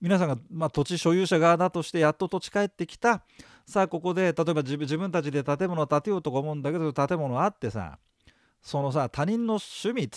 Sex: male